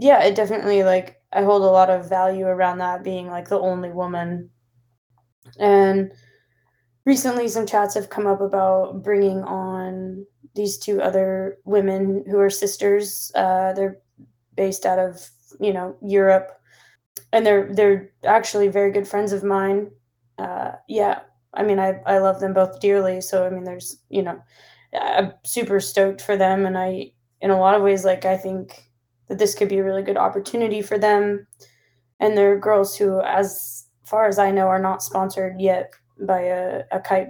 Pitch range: 180-205 Hz